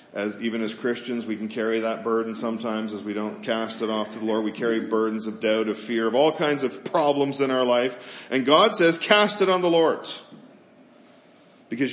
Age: 40-59